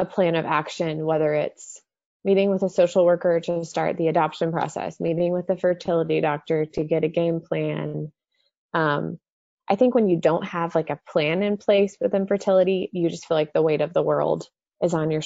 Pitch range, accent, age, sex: 165-195 Hz, American, 20-39, female